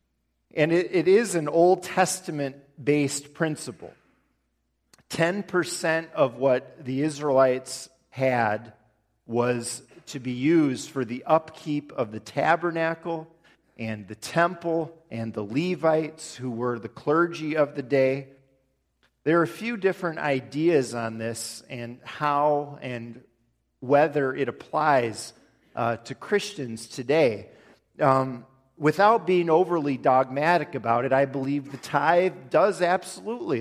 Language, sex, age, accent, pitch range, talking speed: English, male, 40-59, American, 120-165 Hz, 120 wpm